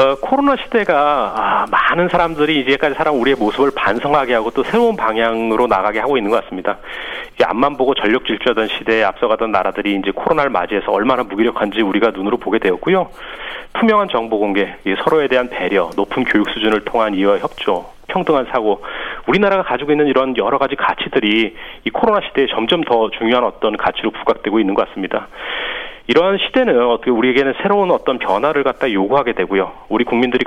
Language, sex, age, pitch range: Korean, male, 40-59, 110-175 Hz